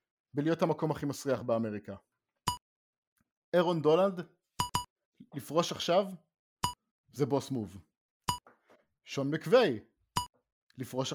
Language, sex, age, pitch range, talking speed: English, male, 50-69, 145-220 Hz, 80 wpm